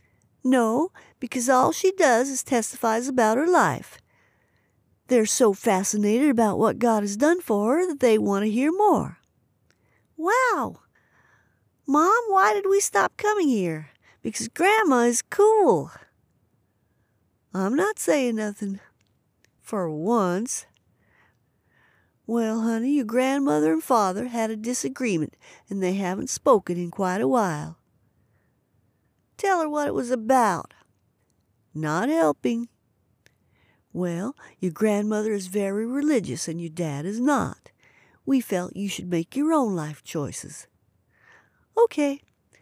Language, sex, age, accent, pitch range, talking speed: English, female, 50-69, American, 195-305 Hz, 125 wpm